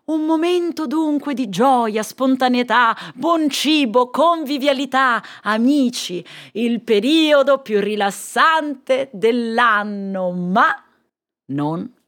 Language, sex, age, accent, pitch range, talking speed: Italian, female, 30-49, native, 185-285 Hz, 85 wpm